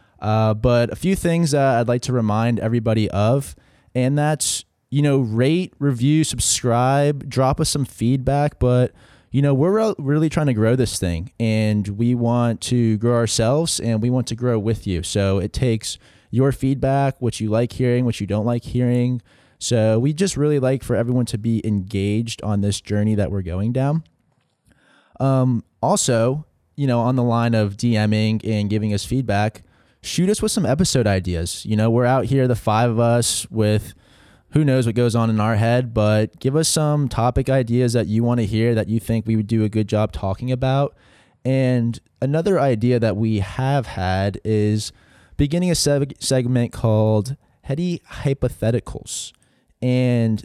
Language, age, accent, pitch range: English, 20-39, American, 110-135 Hz